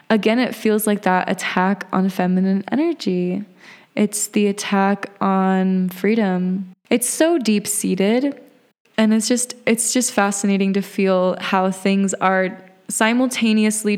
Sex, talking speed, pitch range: female, 125 wpm, 185-210 Hz